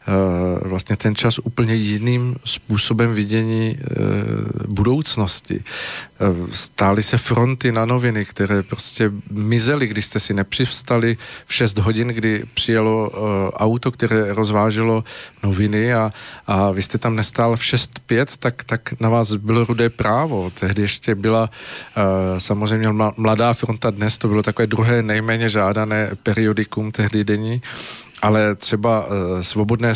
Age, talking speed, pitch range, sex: 50-69, 125 wpm, 105-115 Hz, male